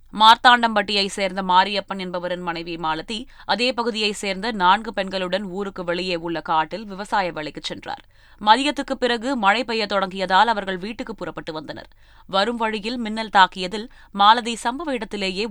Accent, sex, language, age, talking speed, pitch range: native, female, Tamil, 20-39, 130 wpm, 175-220 Hz